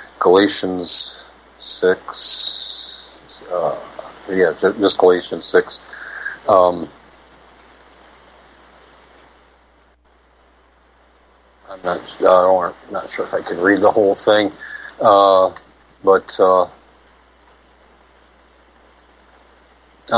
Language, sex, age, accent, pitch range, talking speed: English, male, 50-69, American, 80-100 Hz, 75 wpm